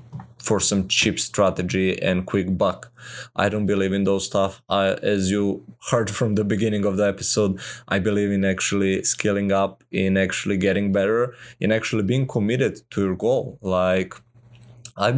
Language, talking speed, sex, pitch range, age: English, 160 wpm, male, 95-115 Hz, 20-39